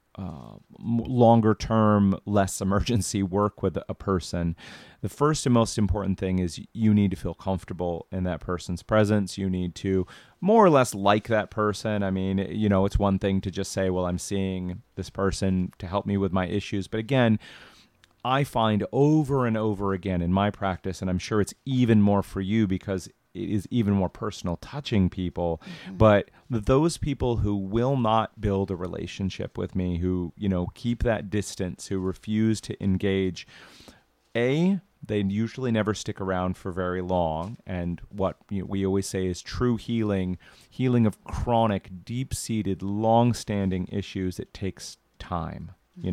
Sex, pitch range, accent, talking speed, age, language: male, 90-110 Hz, American, 170 wpm, 30-49, English